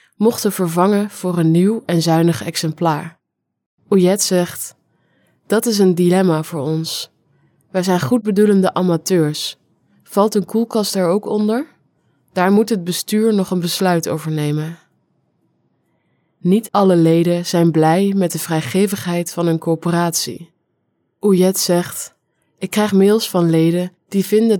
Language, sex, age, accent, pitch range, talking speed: English, female, 20-39, Dutch, 165-195 Hz, 135 wpm